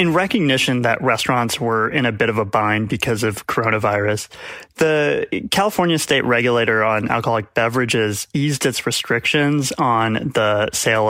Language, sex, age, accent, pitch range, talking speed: English, male, 30-49, American, 115-145 Hz, 145 wpm